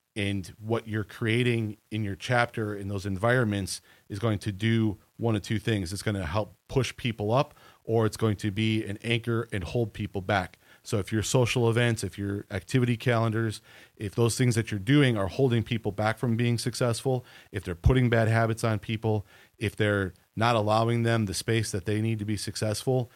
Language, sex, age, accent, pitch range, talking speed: English, male, 30-49, American, 100-115 Hz, 200 wpm